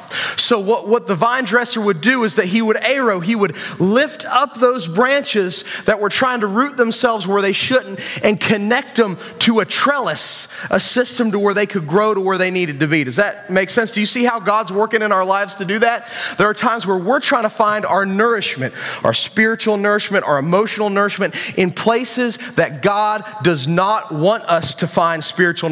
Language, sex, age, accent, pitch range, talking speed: English, male, 30-49, American, 170-225 Hz, 210 wpm